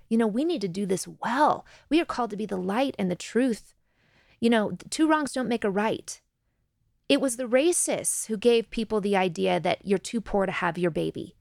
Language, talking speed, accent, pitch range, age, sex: English, 225 wpm, American, 195-260 Hz, 30-49, female